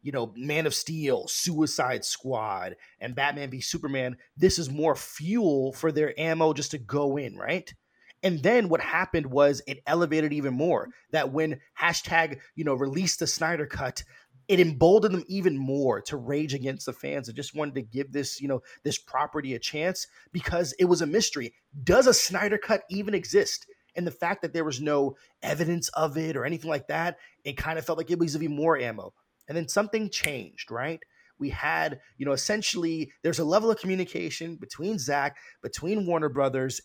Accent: American